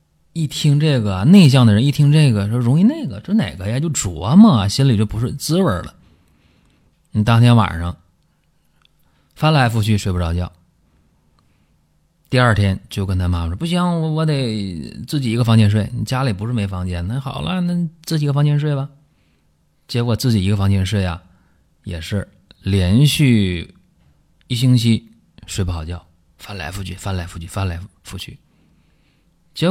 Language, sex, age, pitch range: Chinese, male, 30-49, 95-140 Hz